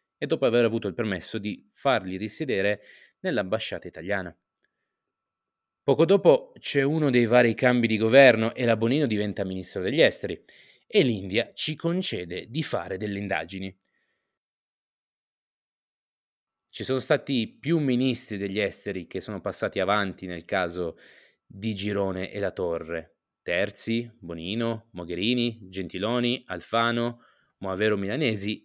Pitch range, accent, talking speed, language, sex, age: 100-125 Hz, native, 125 wpm, Italian, male, 20-39